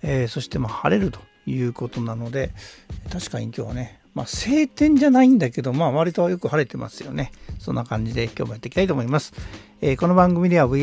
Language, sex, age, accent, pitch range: Japanese, male, 60-79, native, 125-180 Hz